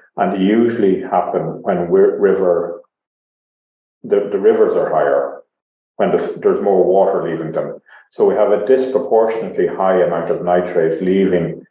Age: 50-69